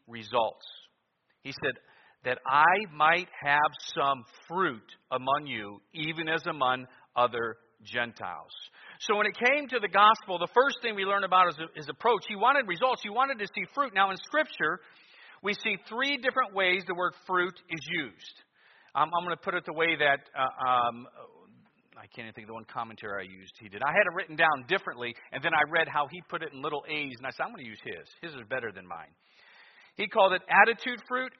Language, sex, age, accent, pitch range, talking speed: English, male, 50-69, American, 140-210 Hz, 210 wpm